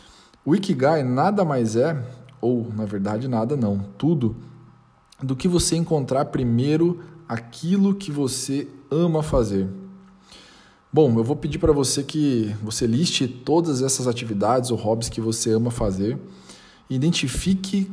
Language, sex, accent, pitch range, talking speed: Portuguese, male, Brazilian, 115-155 Hz, 135 wpm